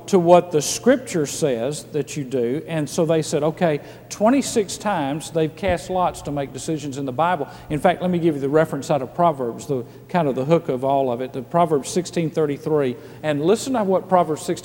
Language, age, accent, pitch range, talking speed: English, 50-69, American, 145-230 Hz, 215 wpm